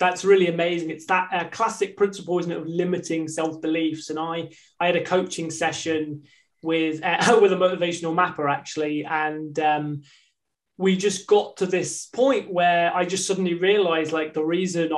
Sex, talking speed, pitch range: male, 170 wpm, 160-185 Hz